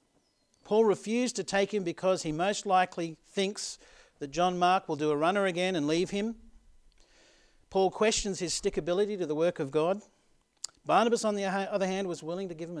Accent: Australian